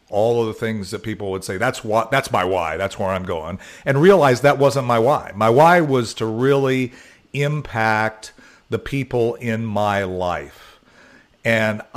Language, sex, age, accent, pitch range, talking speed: English, male, 50-69, American, 100-130 Hz, 175 wpm